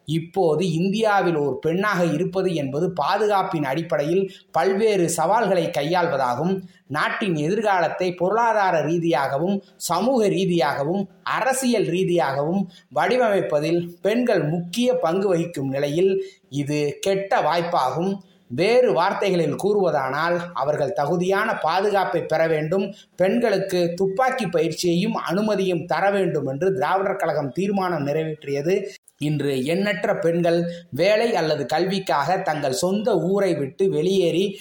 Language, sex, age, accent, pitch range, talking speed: Tamil, male, 30-49, native, 160-195 Hz, 100 wpm